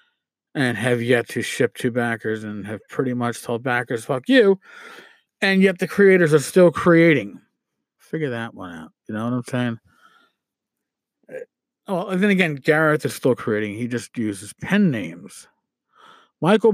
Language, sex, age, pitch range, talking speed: English, male, 50-69, 125-195 Hz, 160 wpm